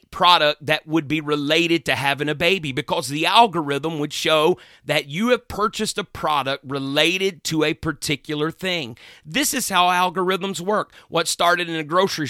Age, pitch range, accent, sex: 40-59, 150-195 Hz, American, male